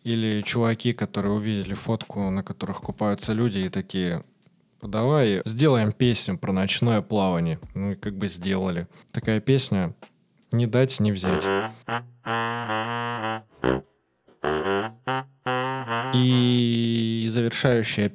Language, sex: Russian, male